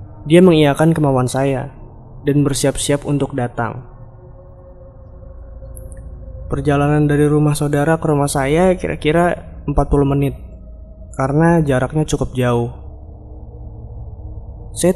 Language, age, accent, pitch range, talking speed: Indonesian, 20-39, native, 105-155 Hz, 90 wpm